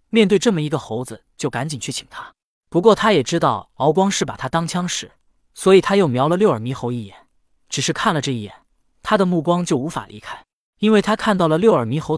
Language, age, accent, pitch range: Chinese, 20-39, native, 135-195 Hz